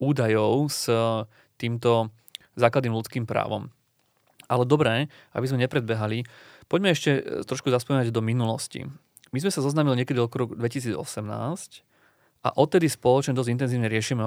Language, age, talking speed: Slovak, 30-49, 125 wpm